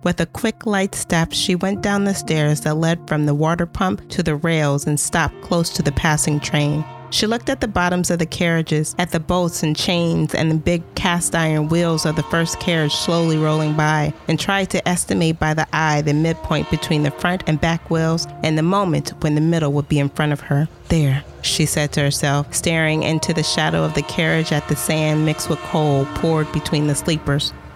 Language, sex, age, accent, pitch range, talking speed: English, female, 30-49, American, 145-175 Hz, 220 wpm